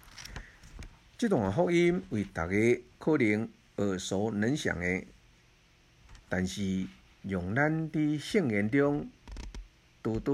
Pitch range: 95-130 Hz